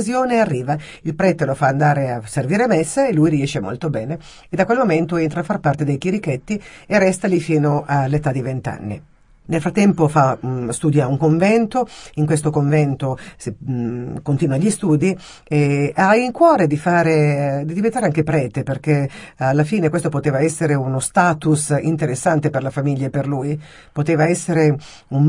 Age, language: 50-69, Italian